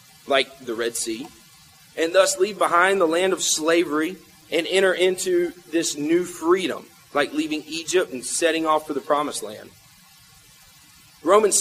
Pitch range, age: 155-205 Hz, 30-49